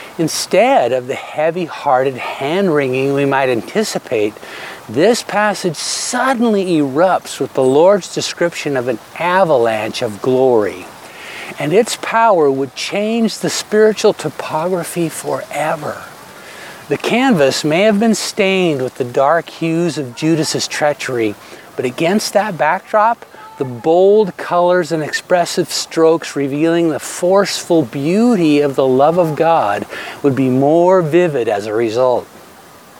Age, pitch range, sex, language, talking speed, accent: 50-69, 135-185 Hz, male, English, 125 wpm, American